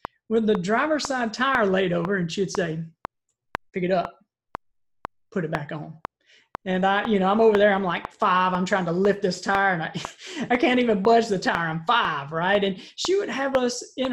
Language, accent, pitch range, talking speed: English, American, 185-235 Hz, 210 wpm